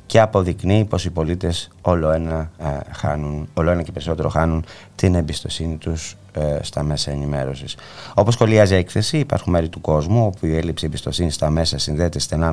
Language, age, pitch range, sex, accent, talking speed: Greek, 30-49, 75-95 Hz, male, Spanish, 160 wpm